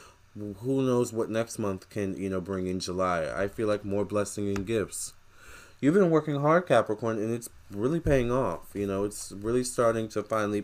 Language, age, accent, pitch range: English, 20-39, American, 100-120 Hz